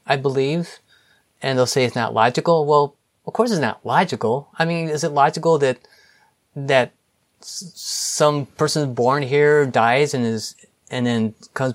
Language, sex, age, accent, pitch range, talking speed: English, male, 30-49, American, 115-135 Hz, 165 wpm